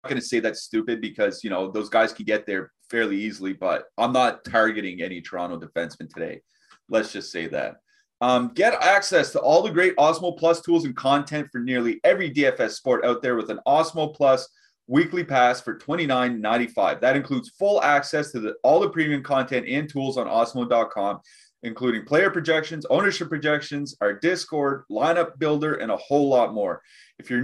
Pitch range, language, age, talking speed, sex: 115-155 Hz, English, 30-49, 180 wpm, male